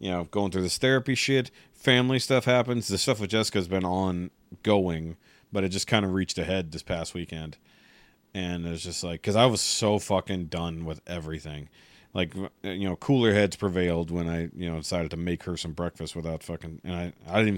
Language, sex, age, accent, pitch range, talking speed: English, male, 40-59, American, 85-110 Hz, 210 wpm